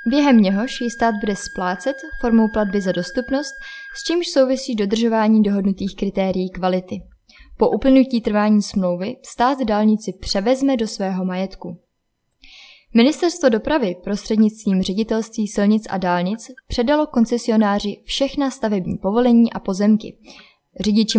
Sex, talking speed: female, 120 wpm